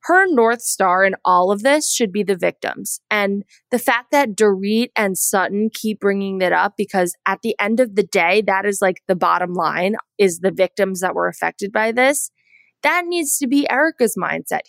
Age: 20-39